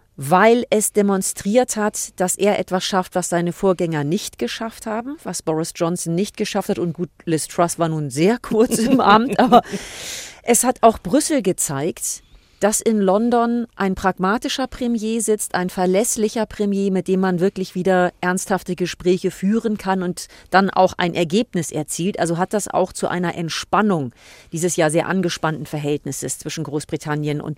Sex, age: female, 40-59